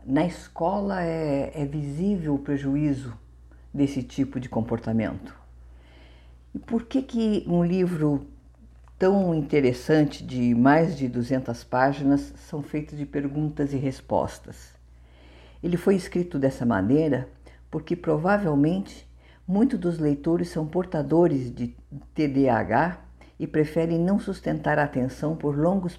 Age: 50-69